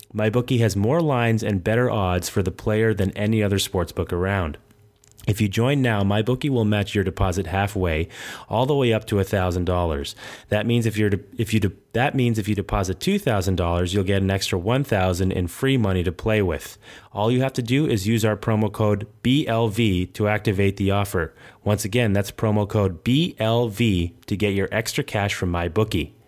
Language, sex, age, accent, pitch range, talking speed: English, male, 30-49, American, 95-115 Hz, 175 wpm